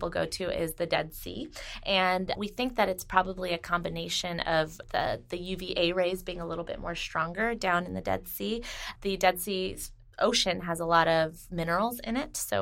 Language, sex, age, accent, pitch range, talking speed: English, female, 20-39, American, 165-190 Hz, 200 wpm